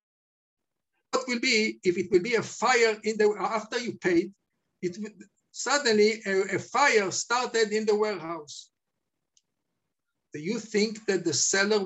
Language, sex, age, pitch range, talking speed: English, male, 50-69, 165-220 Hz, 150 wpm